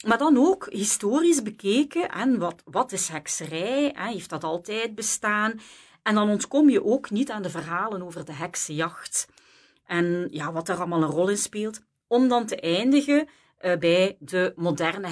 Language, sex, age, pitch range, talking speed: Dutch, female, 40-59, 170-230 Hz, 165 wpm